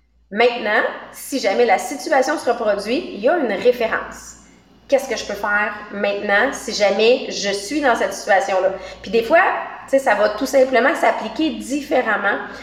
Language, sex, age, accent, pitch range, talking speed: English, female, 30-49, Canadian, 230-300 Hz, 160 wpm